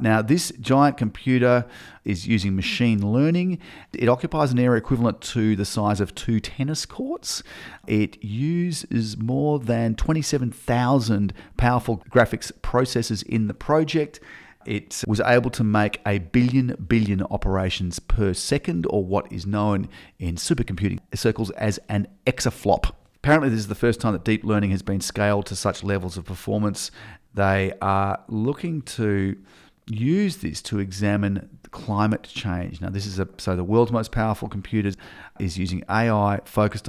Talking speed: 150 wpm